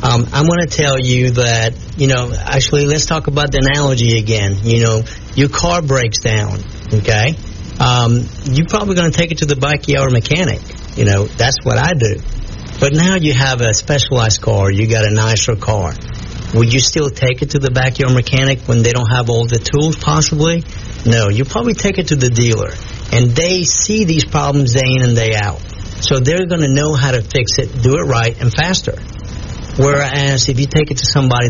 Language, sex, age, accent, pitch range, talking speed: English, male, 50-69, American, 110-140 Hz, 205 wpm